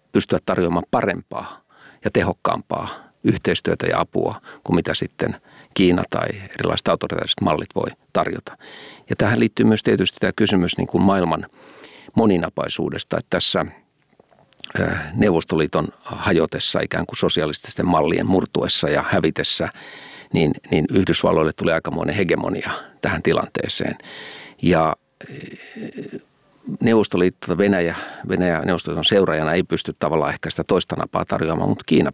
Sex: male